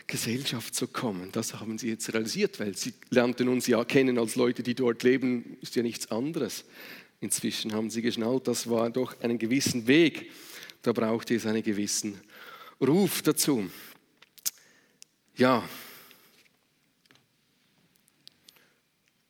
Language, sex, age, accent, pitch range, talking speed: German, male, 40-59, Austrian, 115-160 Hz, 130 wpm